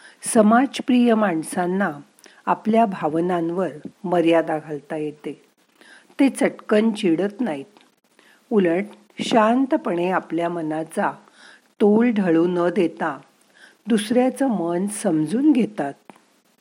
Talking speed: 85 wpm